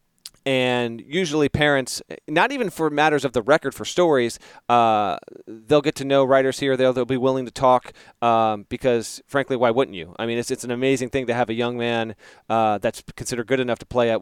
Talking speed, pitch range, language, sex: 215 wpm, 120-155 Hz, English, male